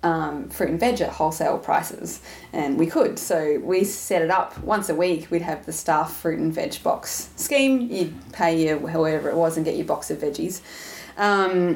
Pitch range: 155-180 Hz